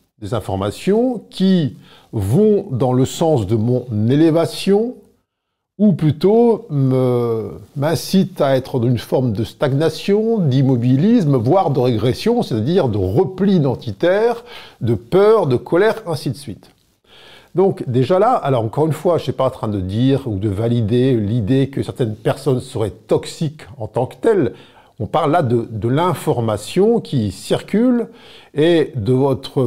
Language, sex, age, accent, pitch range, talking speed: French, male, 50-69, French, 120-175 Hz, 150 wpm